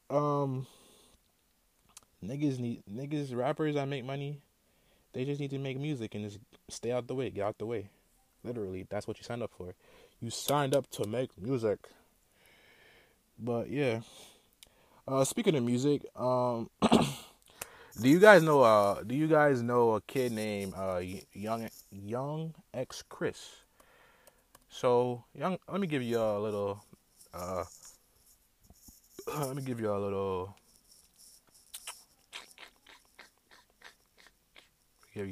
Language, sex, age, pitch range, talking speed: English, male, 20-39, 95-140 Hz, 130 wpm